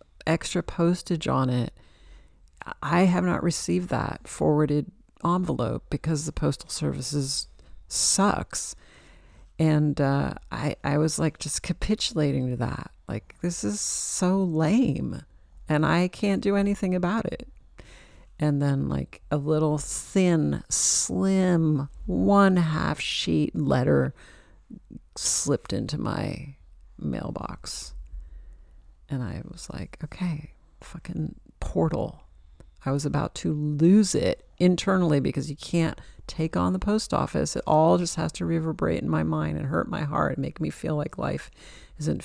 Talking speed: 135 wpm